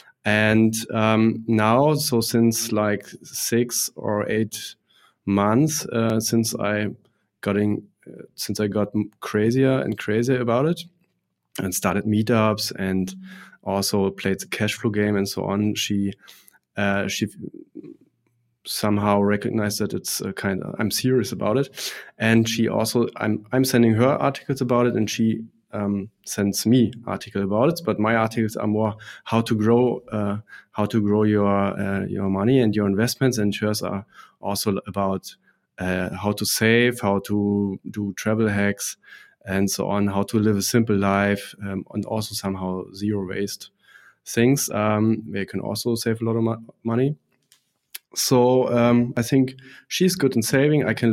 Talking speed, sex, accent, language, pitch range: 160 wpm, male, German, English, 100-115 Hz